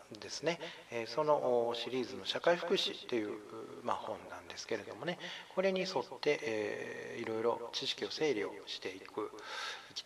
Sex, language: male, Japanese